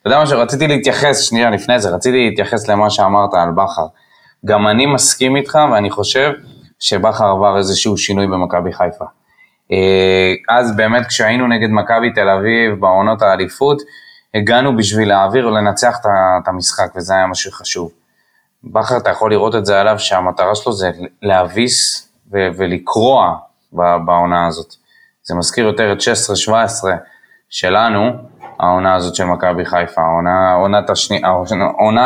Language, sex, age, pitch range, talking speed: Hebrew, male, 20-39, 95-120 Hz, 140 wpm